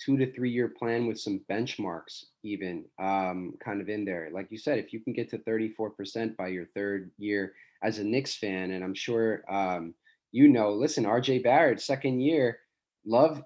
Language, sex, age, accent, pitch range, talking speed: English, male, 20-39, American, 100-135 Hz, 200 wpm